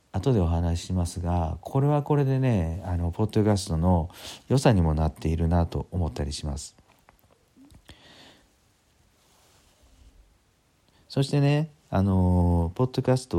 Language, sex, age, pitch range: Japanese, male, 40-59, 85-115 Hz